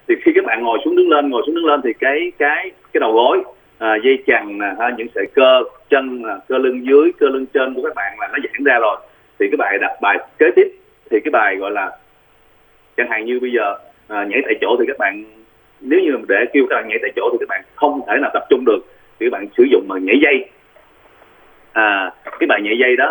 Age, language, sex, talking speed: 30-49, Vietnamese, male, 250 wpm